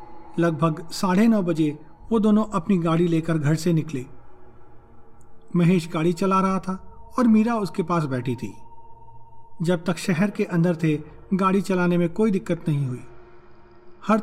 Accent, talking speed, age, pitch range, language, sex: native, 155 wpm, 40-59, 135-190 Hz, Hindi, male